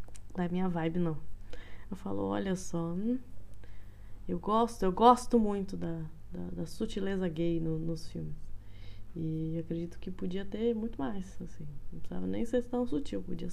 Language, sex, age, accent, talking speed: Portuguese, female, 20-39, Brazilian, 170 wpm